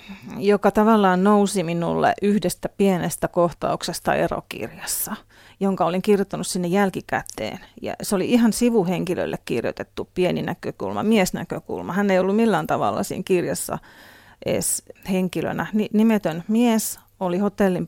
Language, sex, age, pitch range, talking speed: Finnish, female, 30-49, 175-215 Hz, 120 wpm